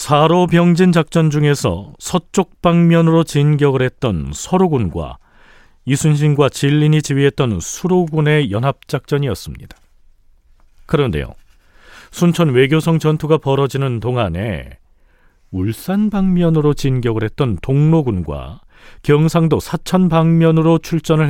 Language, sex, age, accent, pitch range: Korean, male, 40-59, native, 100-160 Hz